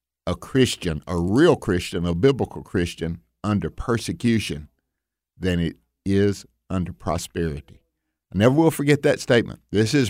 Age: 50-69